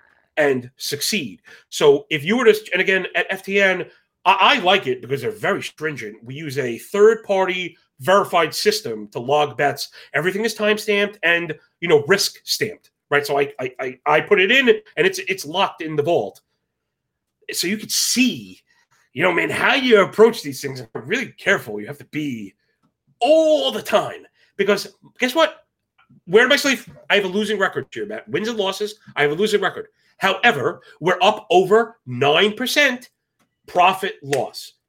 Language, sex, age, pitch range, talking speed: English, male, 30-49, 155-220 Hz, 175 wpm